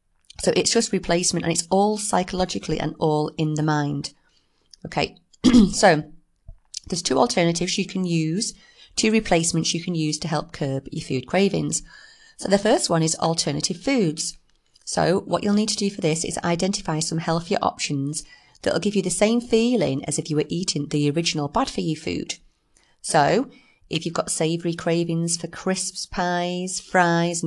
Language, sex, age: English, female, 30-49